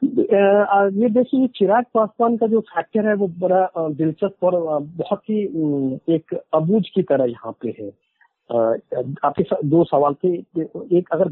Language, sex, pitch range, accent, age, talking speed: Hindi, male, 150-195 Hz, native, 50-69, 145 wpm